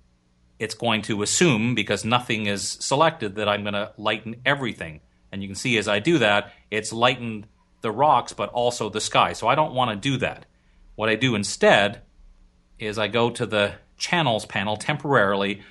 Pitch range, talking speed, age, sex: 100-125 Hz, 185 wpm, 40-59, male